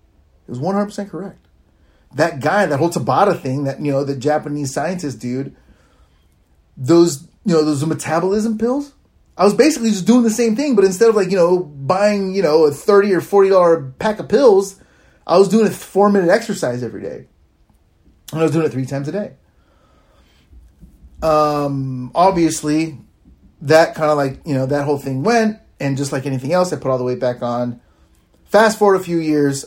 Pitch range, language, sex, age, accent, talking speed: 110-160 Hz, English, male, 30-49, American, 195 wpm